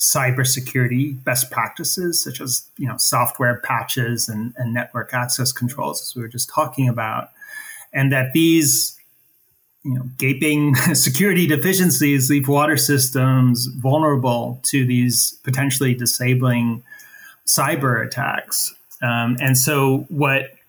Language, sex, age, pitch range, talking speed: English, male, 30-49, 125-145 Hz, 120 wpm